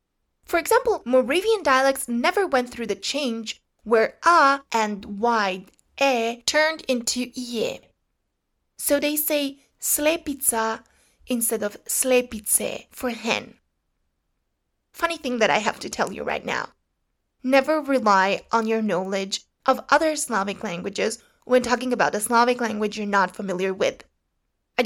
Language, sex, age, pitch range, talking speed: English, female, 20-39, 215-280 Hz, 135 wpm